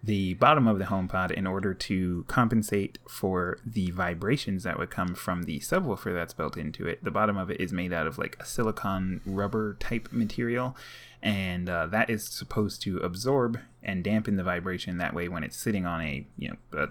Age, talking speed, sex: 20-39, 200 wpm, male